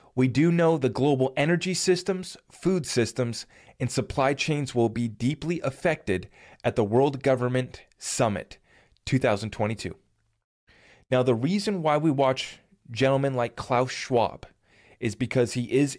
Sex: male